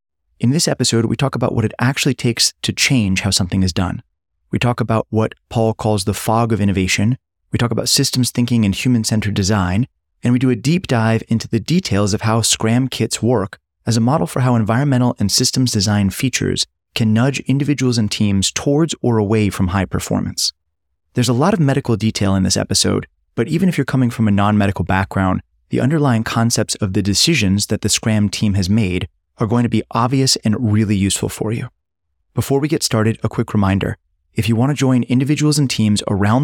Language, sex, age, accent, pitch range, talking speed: English, male, 30-49, American, 100-120 Hz, 205 wpm